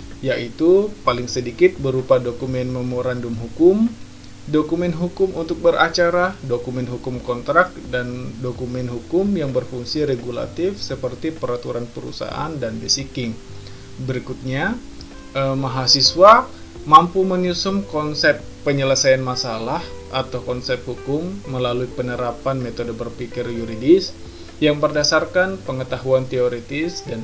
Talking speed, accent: 100 wpm, native